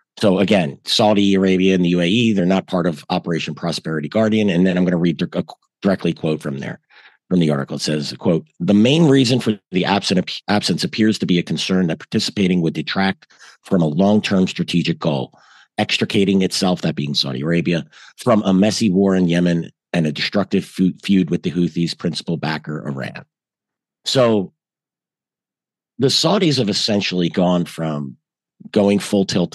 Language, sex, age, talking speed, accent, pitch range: English, male, 50-69, 170 wpm, American, 85-100 Hz